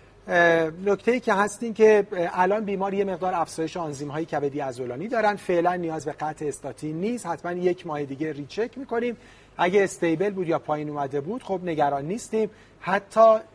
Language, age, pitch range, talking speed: Persian, 40-59, 150-200 Hz, 170 wpm